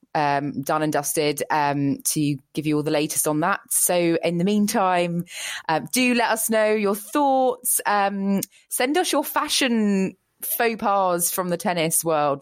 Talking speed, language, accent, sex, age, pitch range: 170 wpm, English, British, female, 20-39, 150-195 Hz